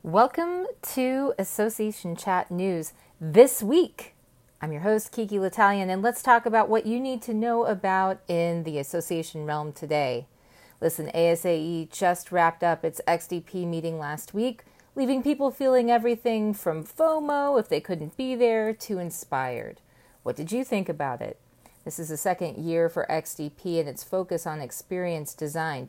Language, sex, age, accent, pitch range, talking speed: English, female, 40-59, American, 155-215 Hz, 160 wpm